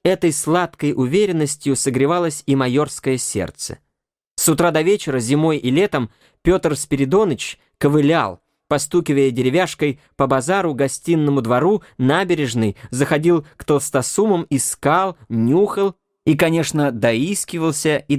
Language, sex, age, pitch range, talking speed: English, male, 20-39, 130-165 Hz, 110 wpm